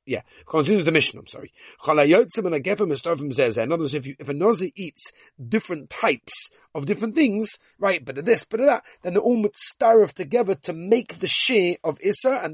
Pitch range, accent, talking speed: 140-200 Hz, British, 180 wpm